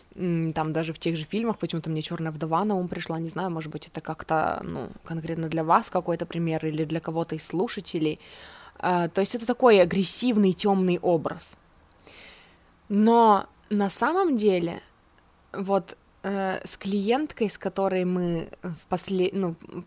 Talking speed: 155 wpm